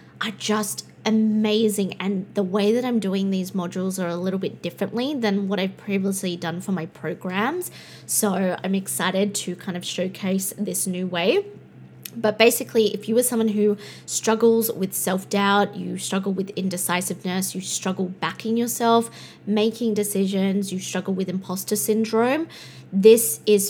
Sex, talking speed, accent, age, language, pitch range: female, 155 wpm, Australian, 20-39, English, 185-220 Hz